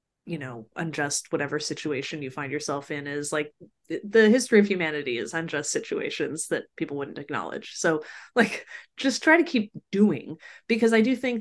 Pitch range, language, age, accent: 155-210 Hz, English, 30-49, American